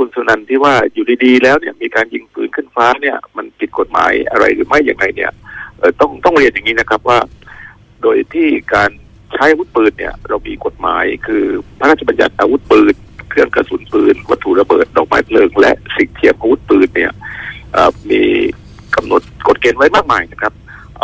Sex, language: male, Thai